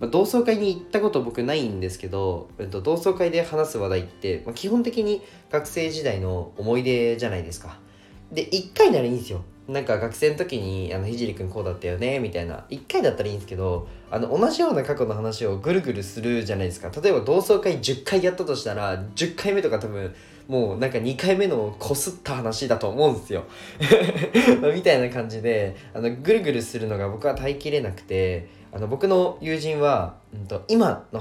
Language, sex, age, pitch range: Japanese, male, 20-39, 100-150 Hz